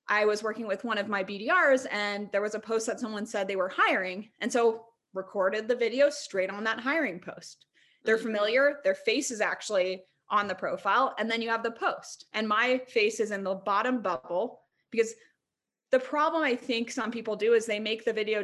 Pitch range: 195-255 Hz